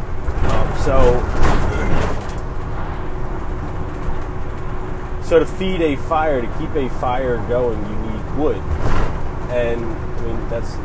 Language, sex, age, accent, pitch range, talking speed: English, male, 20-39, American, 95-125 Hz, 100 wpm